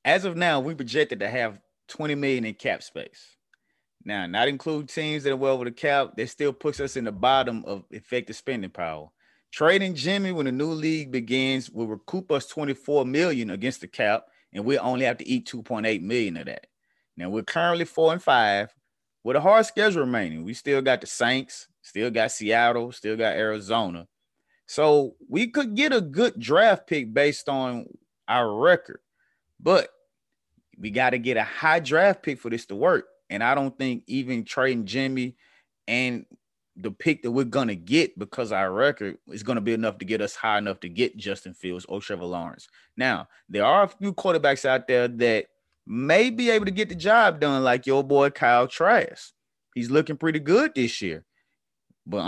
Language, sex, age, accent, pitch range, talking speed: English, male, 30-49, American, 120-175 Hz, 195 wpm